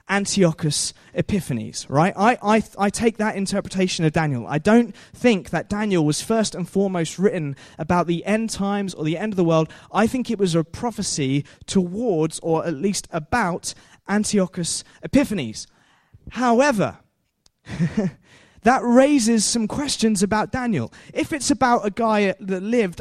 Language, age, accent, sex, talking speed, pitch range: English, 20-39, British, male, 150 wpm, 170-225 Hz